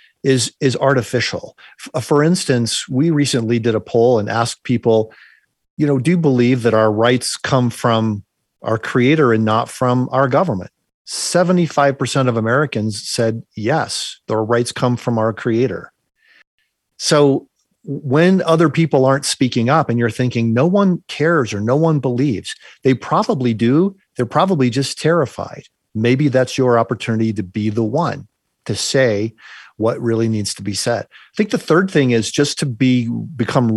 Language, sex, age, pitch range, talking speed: English, male, 40-59, 115-145 Hz, 160 wpm